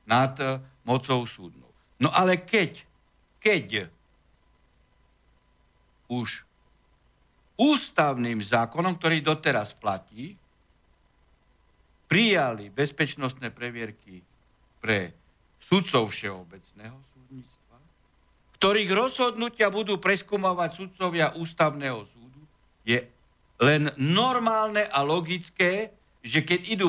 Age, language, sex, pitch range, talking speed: 60-79, Slovak, male, 125-180 Hz, 80 wpm